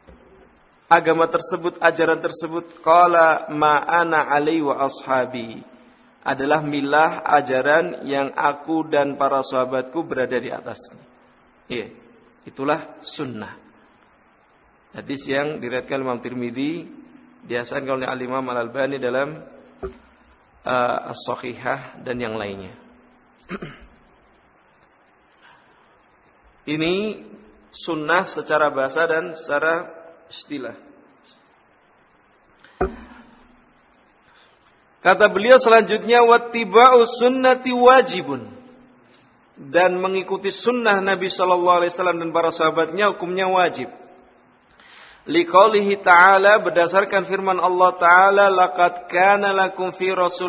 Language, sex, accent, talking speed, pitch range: Indonesian, male, native, 85 wpm, 145-195 Hz